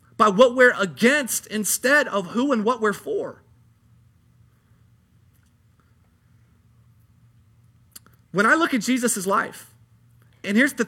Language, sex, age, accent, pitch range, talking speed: English, male, 30-49, American, 195-275 Hz, 110 wpm